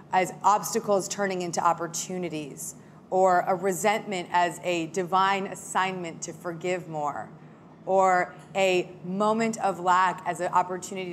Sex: female